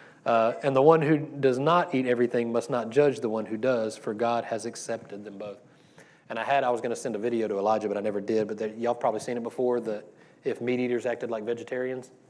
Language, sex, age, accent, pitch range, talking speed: English, male, 30-49, American, 110-130 Hz, 260 wpm